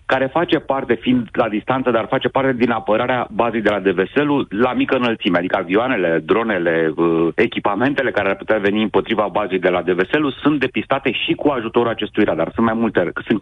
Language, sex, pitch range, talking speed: Romanian, male, 95-140 Hz, 190 wpm